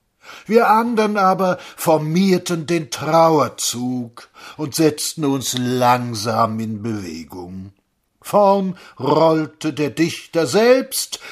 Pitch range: 135-195 Hz